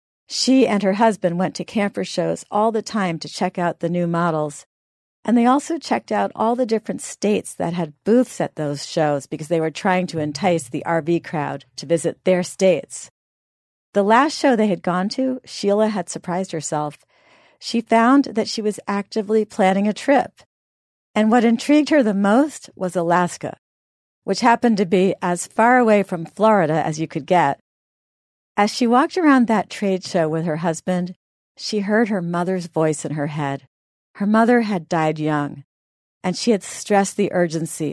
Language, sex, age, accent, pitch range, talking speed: English, female, 50-69, American, 160-215 Hz, 180 wpm